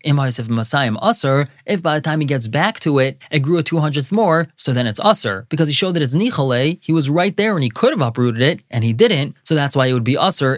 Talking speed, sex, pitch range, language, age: 255 wpm, male, 130-170 Hz, English, 20-39